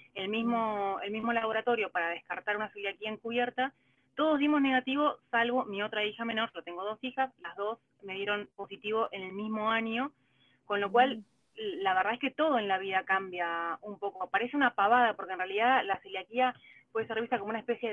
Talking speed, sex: 200 wpm, female